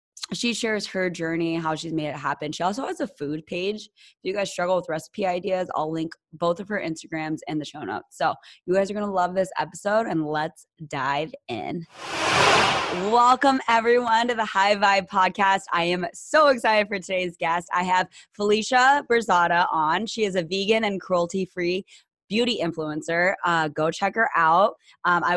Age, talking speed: 20-39, 185 wpm